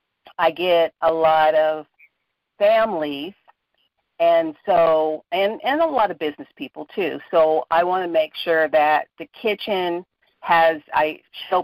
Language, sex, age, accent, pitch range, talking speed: English, female, 50-69, American, 155-195 Hz, 145 wpm